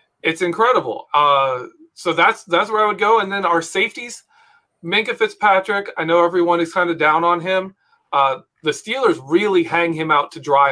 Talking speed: 190 wpm